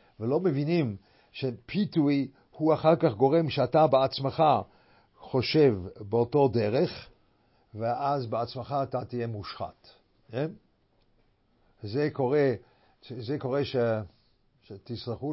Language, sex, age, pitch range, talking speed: English, male, 50-69, 110-140 Hz, 100 wpm